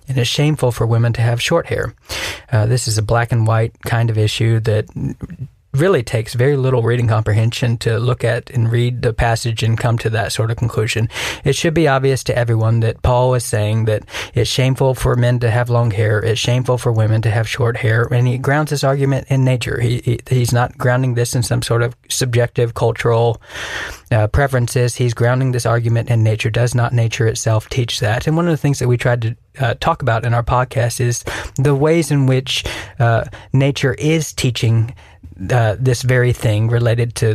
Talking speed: 210 wpm